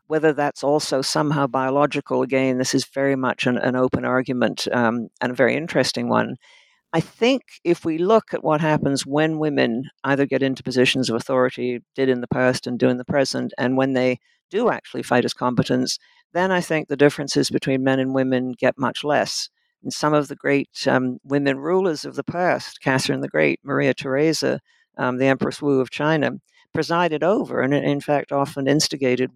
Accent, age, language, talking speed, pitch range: American, 60-79, English, 190 wpm, 130-150 Hz